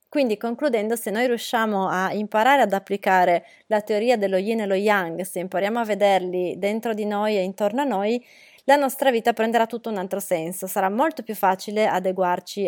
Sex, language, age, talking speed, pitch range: female, Italian, 20-39, 190 wpm, 185-245 Hz